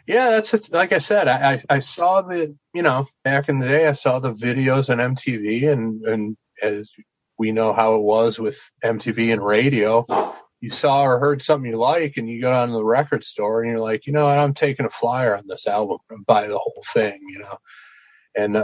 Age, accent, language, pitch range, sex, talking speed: 30-49, American, English, 110-155 Hz, male, 225 wpm